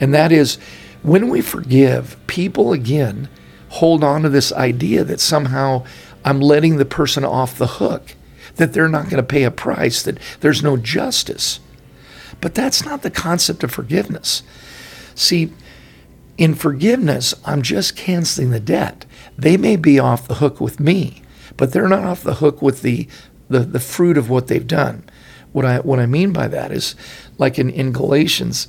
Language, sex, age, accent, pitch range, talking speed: English, male, 50-69, American, 130-165 Hz, 175 wpm